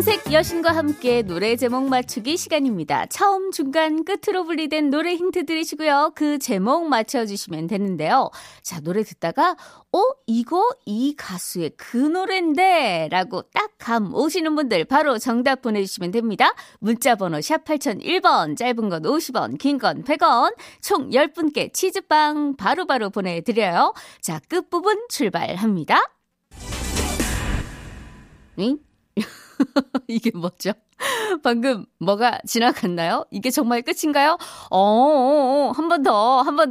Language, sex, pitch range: Korean, female, 220-330 Hz